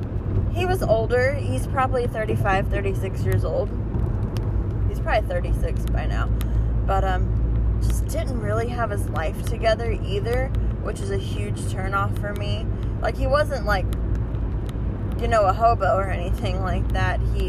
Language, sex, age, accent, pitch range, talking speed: English, female, 20-39, American, 95-110 Hz, 150 wpm